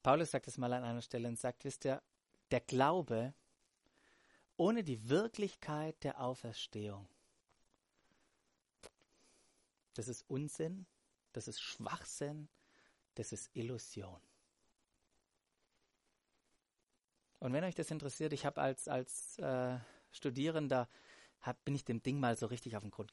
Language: German